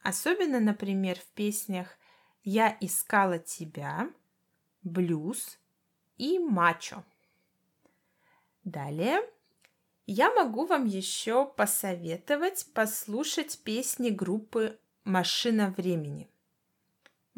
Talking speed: 95 wpm